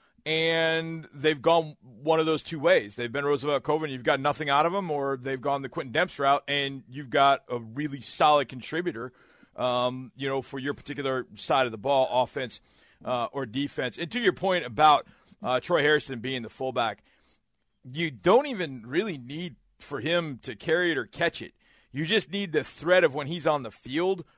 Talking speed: 200 wpm